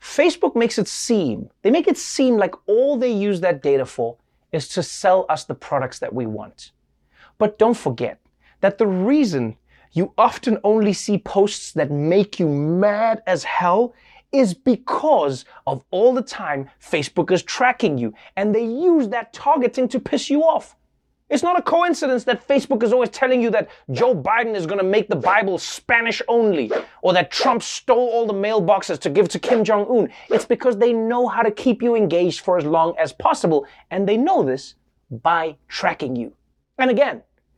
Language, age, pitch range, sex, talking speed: English, 30-49, 185-250 Hz, male, 185 wpm